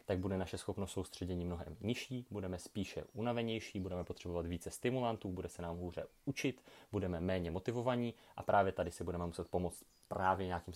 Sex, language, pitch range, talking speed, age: male, Czech, 85-100 Hz, 175 wpm, 30-49